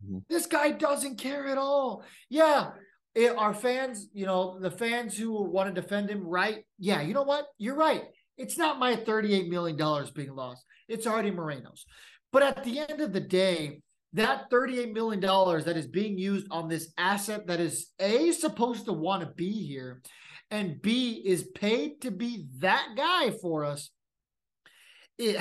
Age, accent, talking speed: 30-49, American, 170 wpm